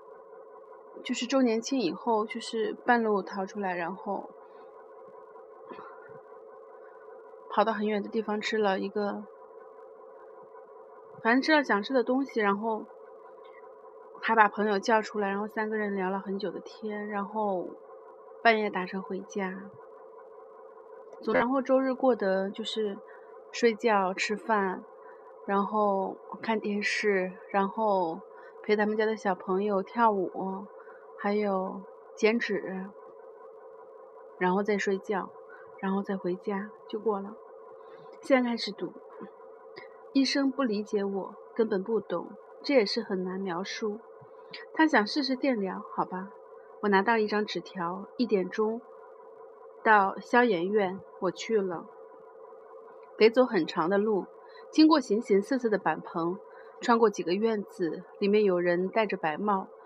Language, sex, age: Chinese, female, 30-49